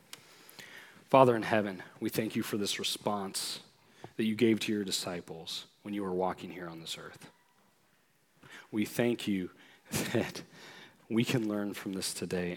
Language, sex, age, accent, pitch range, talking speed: English, male, 40-59, American, 95-115 Hz, 160 wpm